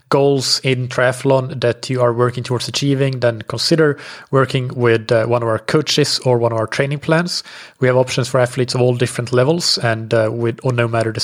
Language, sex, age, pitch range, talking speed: English, male, 30-49, 120-135 Hz, 210 wpm